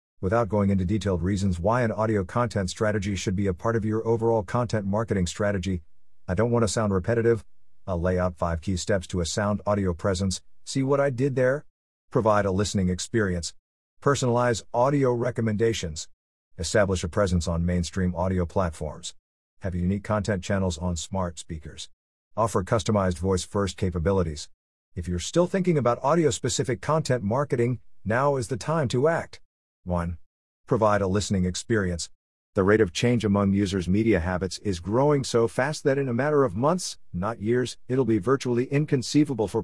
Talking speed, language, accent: 170 wpm, English, American